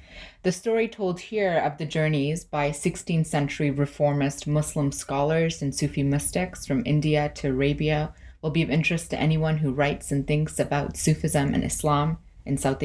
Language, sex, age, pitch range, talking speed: English, female, 20-39, 135-165 Hz, 170 wpm